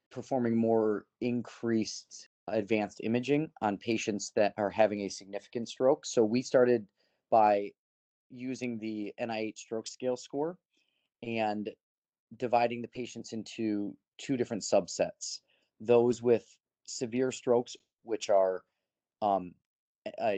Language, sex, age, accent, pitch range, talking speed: English, male, 30-49, American, 105-120 Hz, 115 wpm